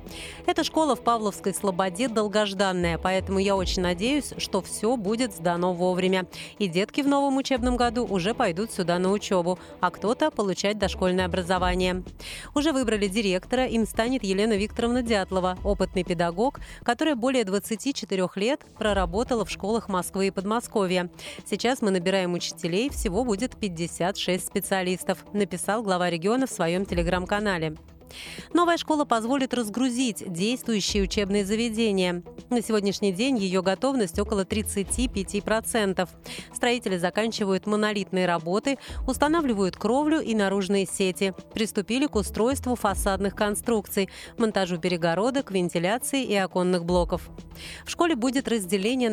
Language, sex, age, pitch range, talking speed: Russian, female, 30-49, 185-235 Hz, 125 wpm